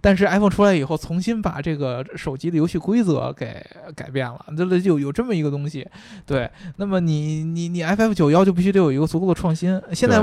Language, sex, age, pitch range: Chinese, male, 20-39, 140-185 Hz